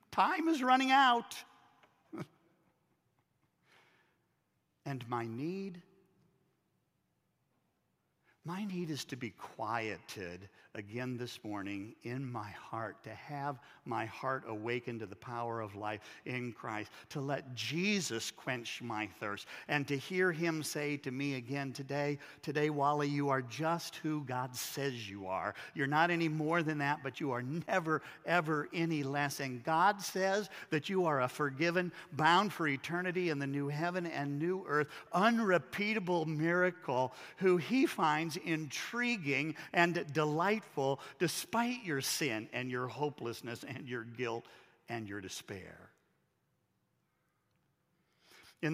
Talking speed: 135 wpm